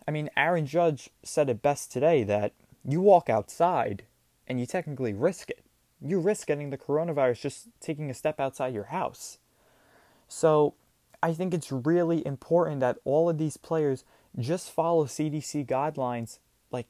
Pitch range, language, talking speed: 130-165 Hz, English, 160 wpm